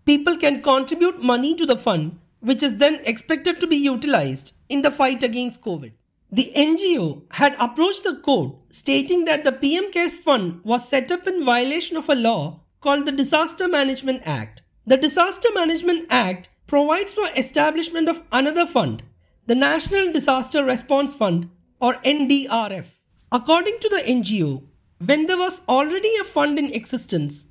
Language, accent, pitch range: English, Indian, 230-310 Hz